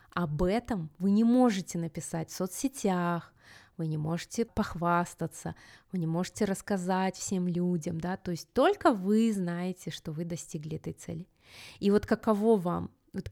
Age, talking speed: 20-39, 155 wpm